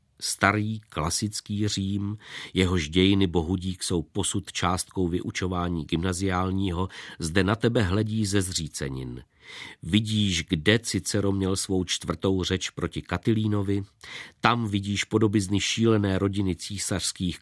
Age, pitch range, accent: 50-69, 85-105 Hz, native